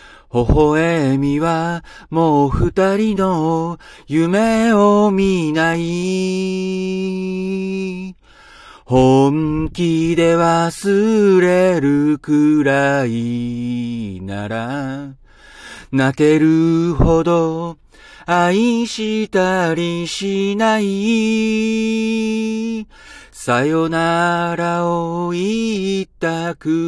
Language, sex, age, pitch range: Japanese, male, 40-59, 145-185 Hz